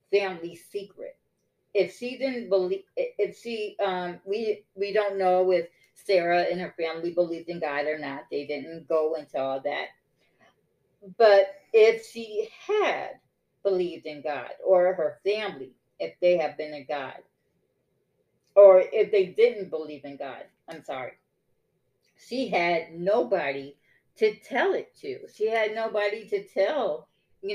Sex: female